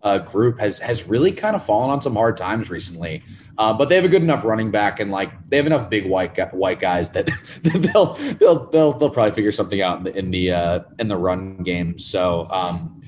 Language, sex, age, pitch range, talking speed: English, male, 30-49, 95-120 Hz, 245 wpm